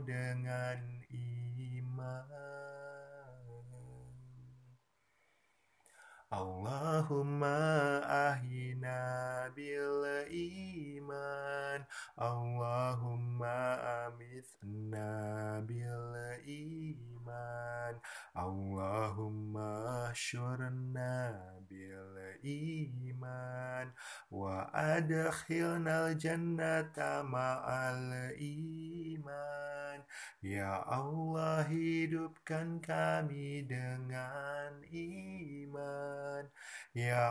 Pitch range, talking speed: 120-145 Hz, 40 wpm